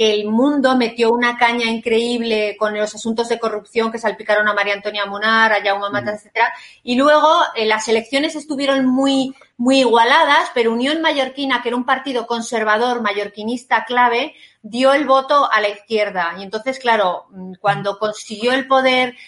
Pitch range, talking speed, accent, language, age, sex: 220-270 Hz, 165 wpm, Spanish, Spanish, 30-49, female